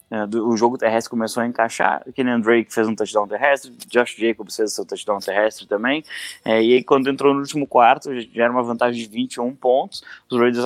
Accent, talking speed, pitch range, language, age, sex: Brazilian, 205 wpm, 110-130 Hz, English, 20-39, male